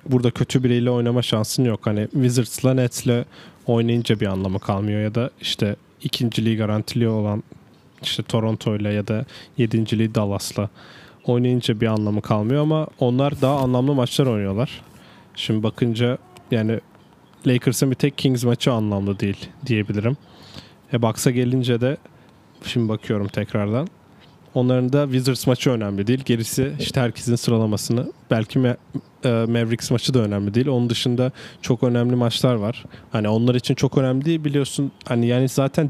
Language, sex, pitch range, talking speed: Turkish, male, 110-130 Hz, 145 wpm